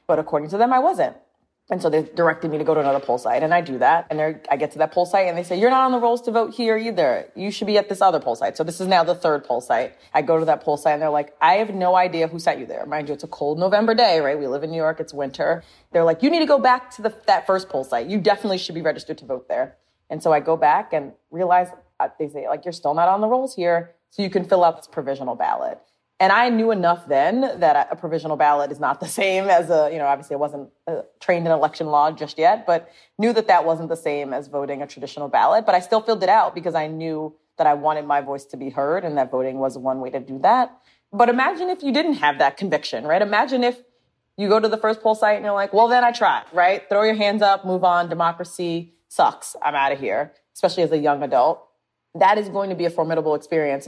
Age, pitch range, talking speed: 30-49, 150-205 Hz, 275 wpm